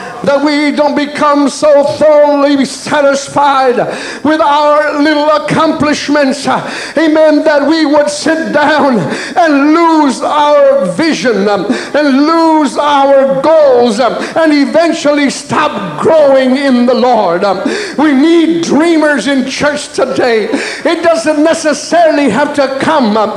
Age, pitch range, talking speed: 50-69, 275-315 Hz, 115 wpm